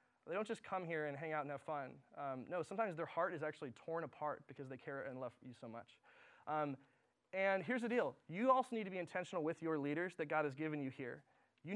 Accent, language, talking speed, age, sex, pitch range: American, English, 250 wpm, 20-39, male, 155-195 Hz